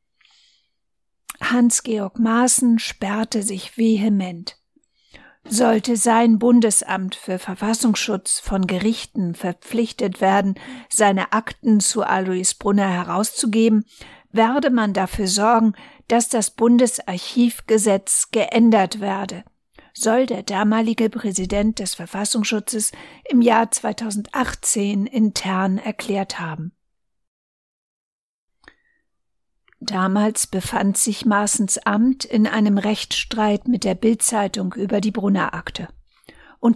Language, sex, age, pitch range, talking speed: German, female, 50-69, 195-230 Hz, 90 wpm